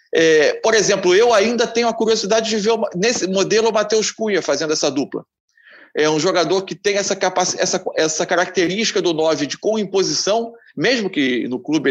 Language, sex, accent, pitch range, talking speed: Portuguese, male, Brazilian, 160-225 Hz, 190 wpm